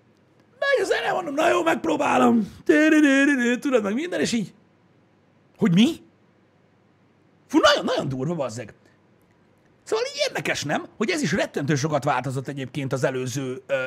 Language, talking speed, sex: Hungarian, 135 wpm, male